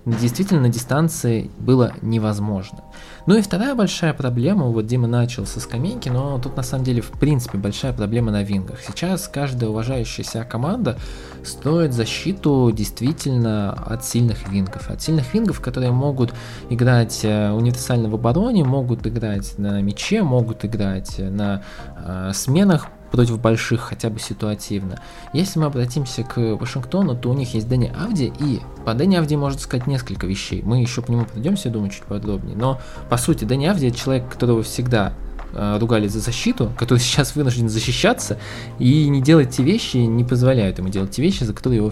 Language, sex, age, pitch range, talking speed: Russian, male, 20-39, 105-135 Hz, 165 wpm